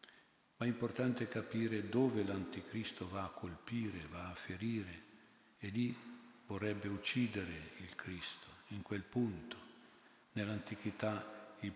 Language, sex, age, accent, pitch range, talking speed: Italian, male, 50-69, native, 95-110 Hz, 115 wpm